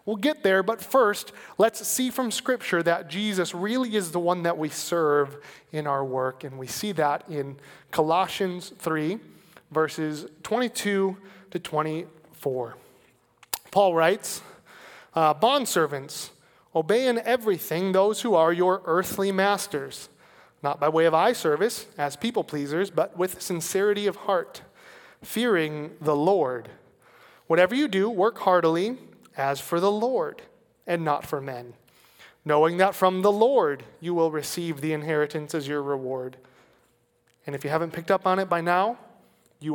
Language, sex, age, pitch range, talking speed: English, male, 30-49, 150-195 Hz, 150 wpm